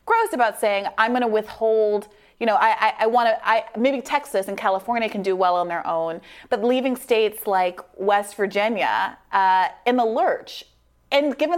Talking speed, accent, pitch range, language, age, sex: 190 wpm, American, 195-245 Hz, English, 30-49, female